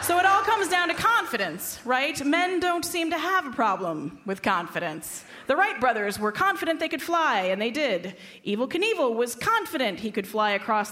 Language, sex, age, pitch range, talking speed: English, female, 30-49, 190-320 Hz, 200 wpm